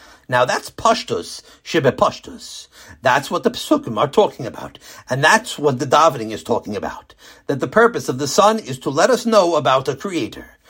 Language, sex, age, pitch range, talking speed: English, male, 60-79, 140-215 Hz, 185 wpm